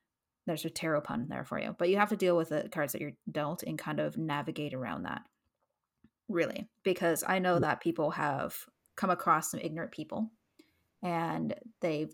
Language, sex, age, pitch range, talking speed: English, female, 20-39, 150-185 Hz, 195 wpm